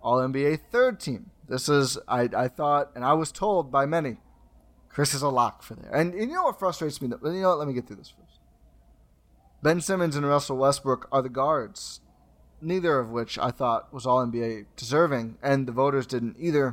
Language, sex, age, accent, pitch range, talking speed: English, male, 20-39, American, 125-170 Hz, 205 wpm